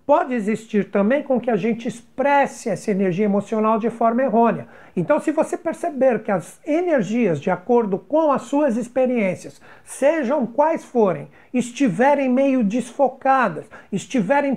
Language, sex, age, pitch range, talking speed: Portuguese, male, 60-79, 220-280 Hz, 140 wpm